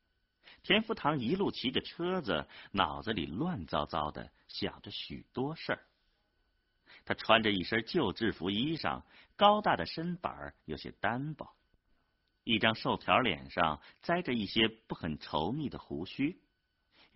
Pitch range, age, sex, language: 80-125 Hz, 50-69, male, Chinese